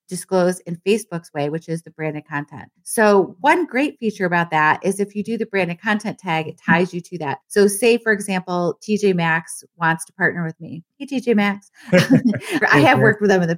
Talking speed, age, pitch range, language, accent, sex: 215 wpm, 30-49, 160-200 Hz, English, American, female